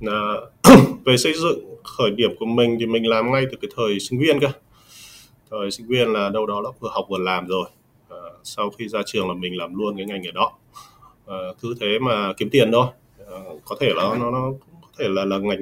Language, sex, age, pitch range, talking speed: Vietnamese, male, 20-39, 95-130 Hz, 235 wpm